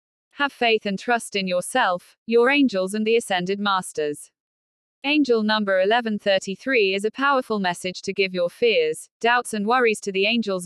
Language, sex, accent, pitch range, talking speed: Hindi, female, British, 185-235 Hz, 165 wpm